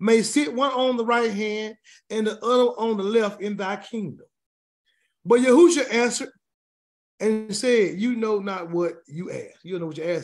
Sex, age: male, 30-49